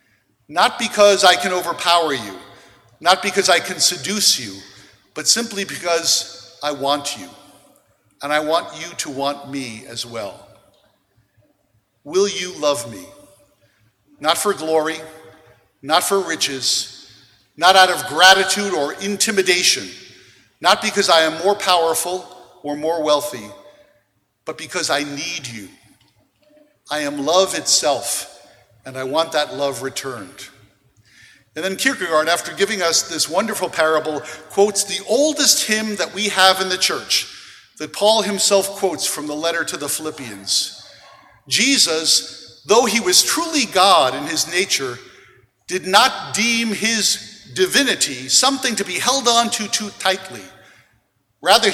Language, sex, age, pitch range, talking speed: English, male, 50-69, 145-200 Hz, 135 wpm